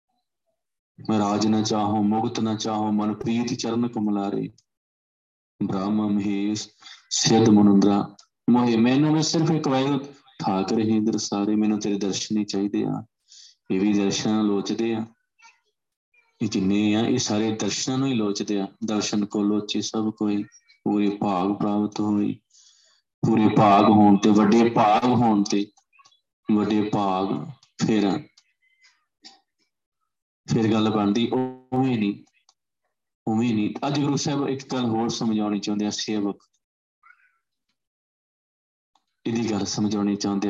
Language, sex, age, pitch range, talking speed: Punjabi, male, 20-39, 100-115 Hz, 110 wpm